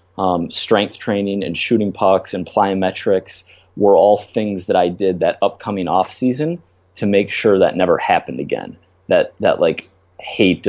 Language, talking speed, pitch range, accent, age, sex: English, 165 wpm, 90-110 Hz, American, 30-49, male